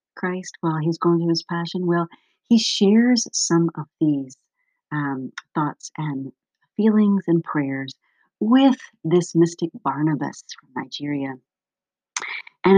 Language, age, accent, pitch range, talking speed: English, 40-59, American, 155-210 Hz, 120 wpm